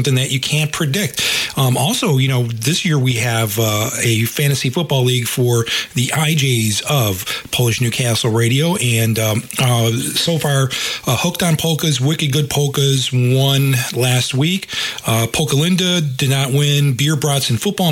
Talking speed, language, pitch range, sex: 160 wpm, English, 125-155 Hz, male